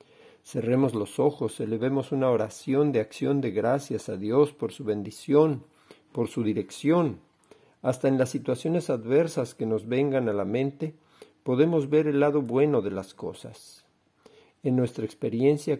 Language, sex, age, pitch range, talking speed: Spanish, male, 50-69, 115-150 Hz, 150 wpm